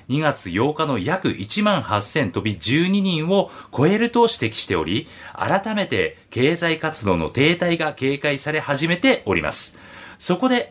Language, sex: Japanese, male